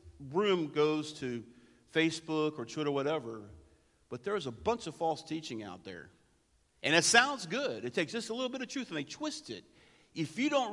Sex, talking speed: male, 195 wpm